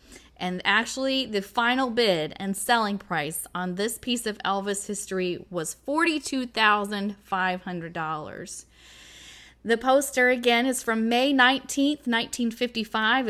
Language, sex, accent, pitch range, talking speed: English, female, American, 185-235 Hz, 110 wpm